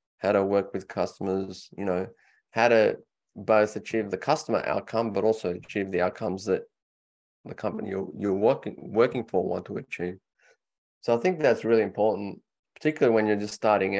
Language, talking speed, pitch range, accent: English, 175 wpm, 95-110 Hz, Australian